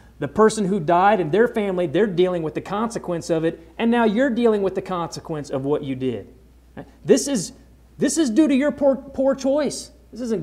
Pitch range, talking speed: 125-185 Hz, 215 wpm